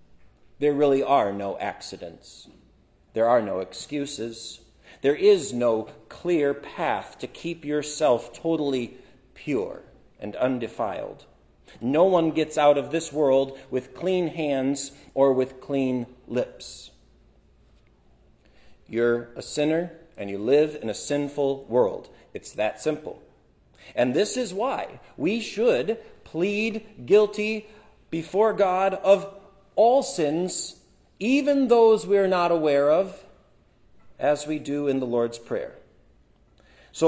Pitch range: 130-205 Hz